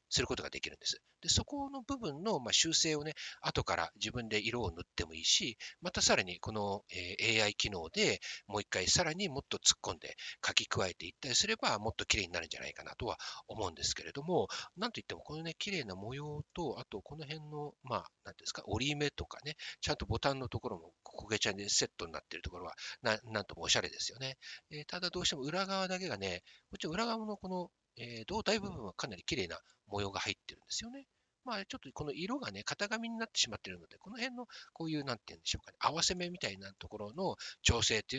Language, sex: Japanese, male